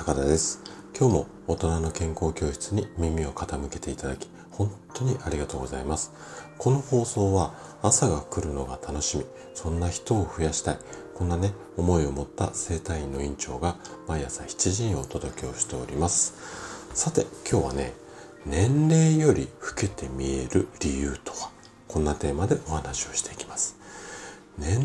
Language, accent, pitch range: Japanese, native, 70-100 Hz